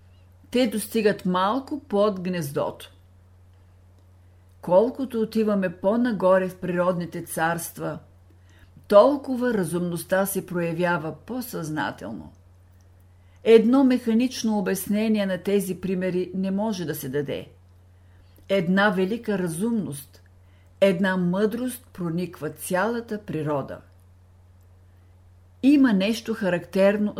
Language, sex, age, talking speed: Bulgarian, female, 50-69, 85 wpm